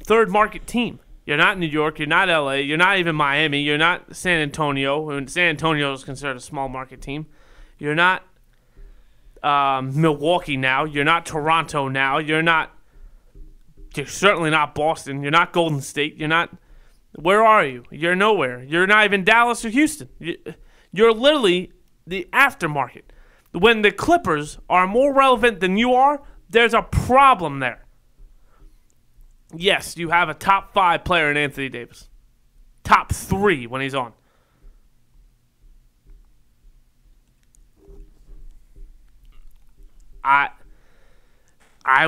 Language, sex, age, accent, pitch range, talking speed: English, male, 30-49, American, 140-180 Hz, 135 wpm